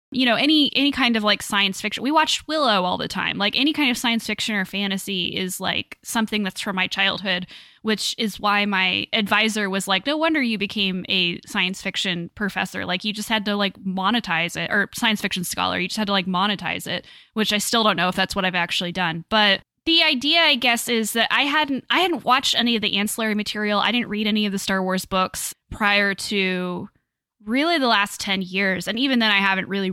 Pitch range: 190-230 Hz